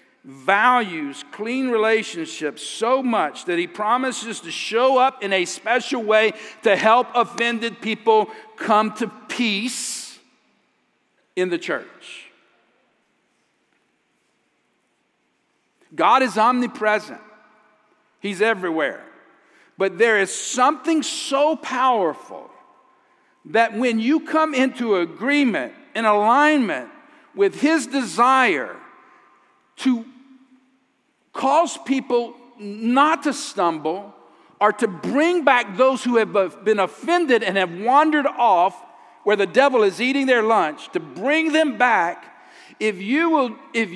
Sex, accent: male, American